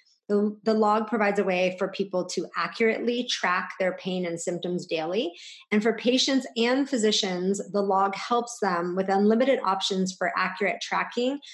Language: English